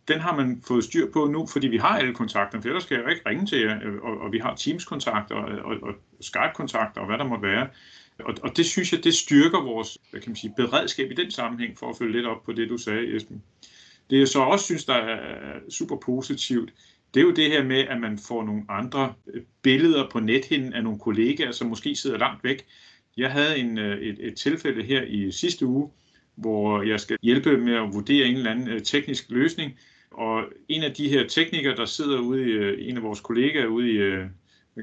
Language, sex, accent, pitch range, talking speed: Danish, male, native, 115-145 Hz, 220 wpm